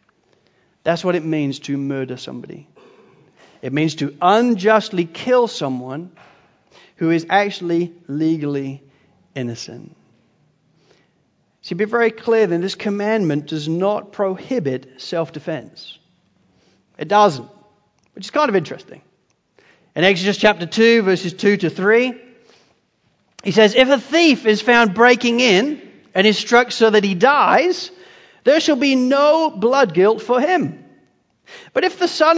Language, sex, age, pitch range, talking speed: English, male, 40-59, 180-280 Hz, 135 wpm